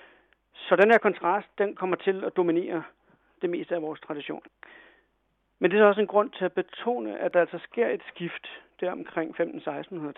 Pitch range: 160-205 Hz